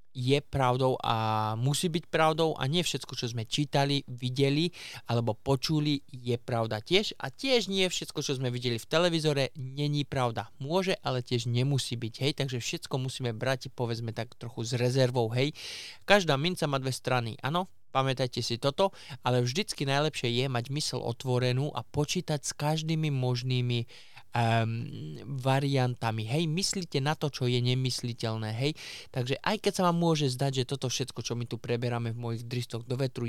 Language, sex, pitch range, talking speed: Slovak, male, 115-140 Hz, 170 wpm